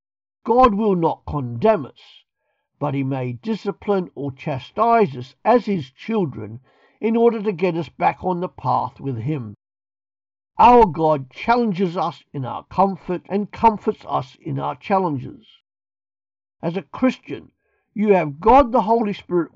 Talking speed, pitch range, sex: 145 wpm, 135-210 Hz, male